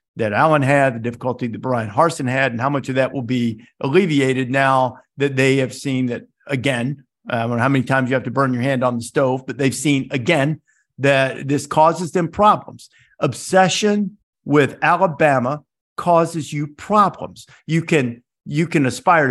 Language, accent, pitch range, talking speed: English, American, 130-175 Hz, 185 wpm